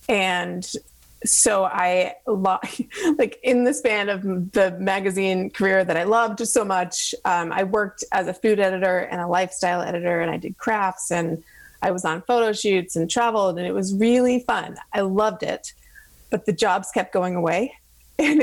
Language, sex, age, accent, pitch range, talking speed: English, female, 30-49, American, 180-240 Hz, 175 wpm